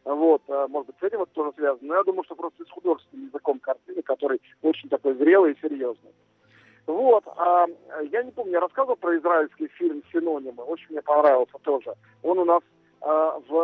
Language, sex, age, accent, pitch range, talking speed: Russian, male, 50-69, native, 145-190 Hz, 185 wpm